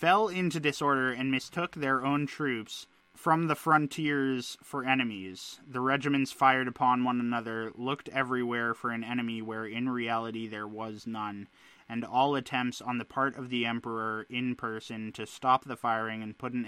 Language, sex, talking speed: English, male, 175 wpm